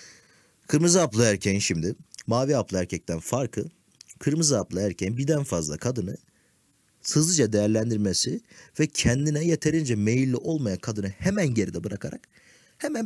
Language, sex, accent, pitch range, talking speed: Turkish, male, native, 95-135 Hz, 120 wpm